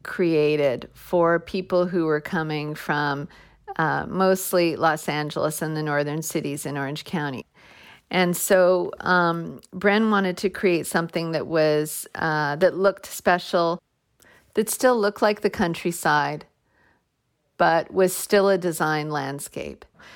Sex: female